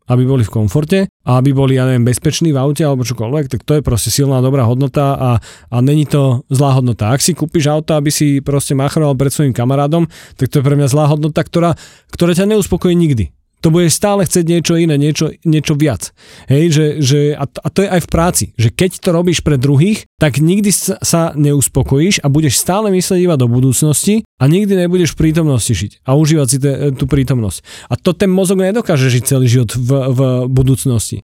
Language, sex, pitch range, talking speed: Slovak, male, 135-165 Hz, 210 wpm